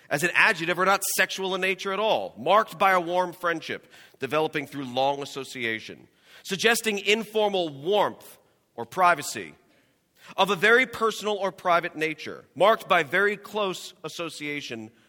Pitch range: 135-180 Hz